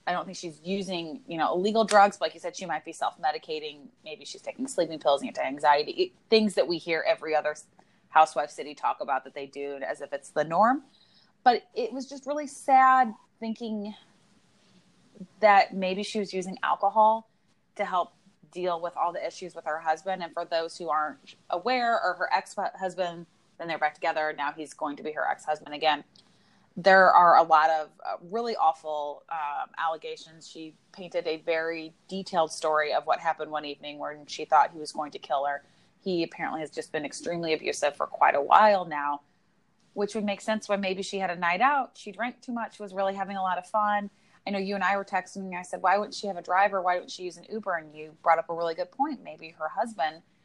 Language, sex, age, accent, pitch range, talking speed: English, female, 20-39, American, 155-210 Hz, 220 wpm